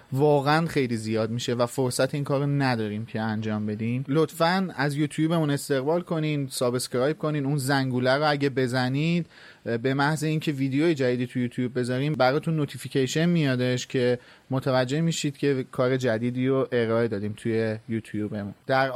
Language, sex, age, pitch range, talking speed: Persian, male, 30-49, 125-155 Hz, 160 wpm